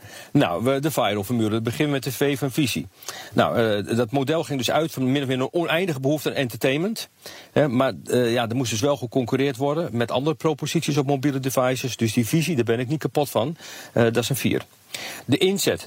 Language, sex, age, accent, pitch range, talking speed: Dutch, male, 40-59, Dutch, 110-145 Hz, 225 wpm